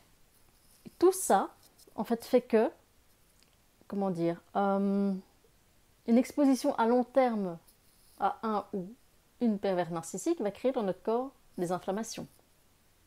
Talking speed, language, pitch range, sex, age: 125 wpm, French, 180-235 Hz, female, 30-49